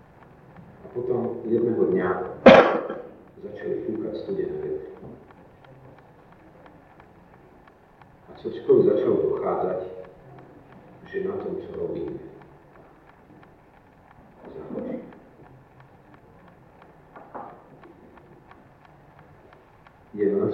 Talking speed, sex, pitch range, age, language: 50 wpm, male, 380-415 Hz, 50-69, Slovak